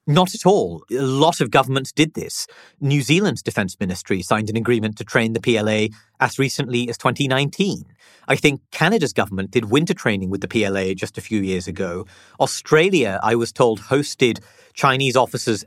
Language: English